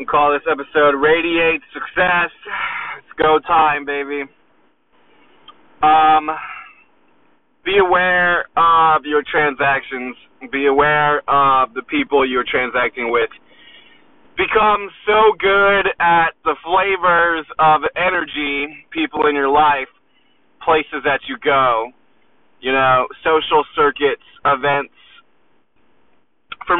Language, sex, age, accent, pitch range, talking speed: English, male, 20-39, American, 140-180 Hz, 105 wpm